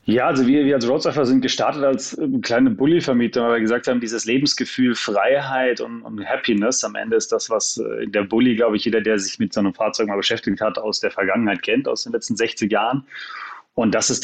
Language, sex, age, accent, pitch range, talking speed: German, male, 30-49, German, 105-130 Hz, 220 wpm